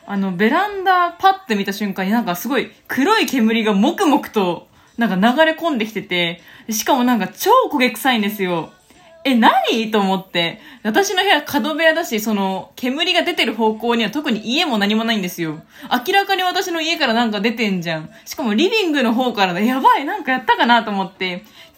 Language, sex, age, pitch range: Japanese, female, 20-39, 200-305 Hz